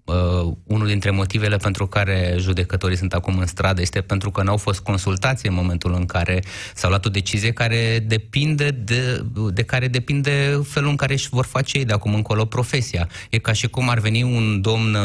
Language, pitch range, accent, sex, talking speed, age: Romanian, 100-125 Hz, native, male, 185 wpm, 20-39